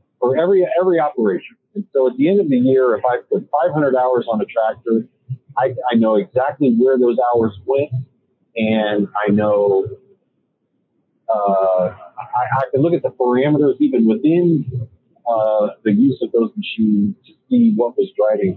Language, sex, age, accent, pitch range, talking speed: English, male, 40-59, American, 105-160 Hz, 170 wpm